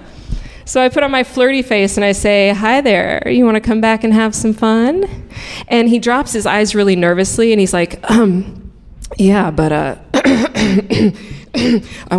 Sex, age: female, 20-39